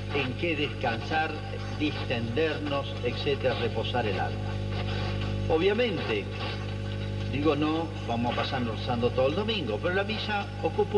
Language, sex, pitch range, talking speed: Spanish, male, 105-115 Hz, 120 wpm